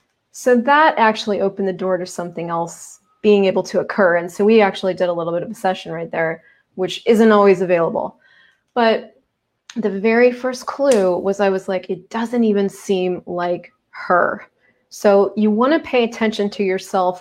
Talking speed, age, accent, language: 185 wpm, 30-49, American, English